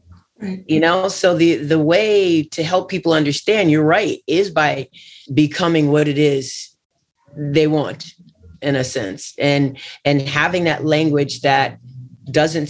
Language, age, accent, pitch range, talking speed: English, 30-49, American, 140-165 Hz, 140 wpm